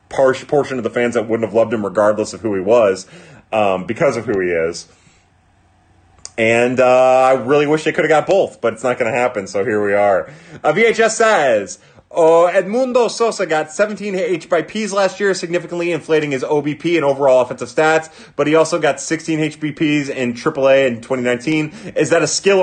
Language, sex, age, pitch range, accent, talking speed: English, male, 30-49, 130-185 Hz, American, 195 wpm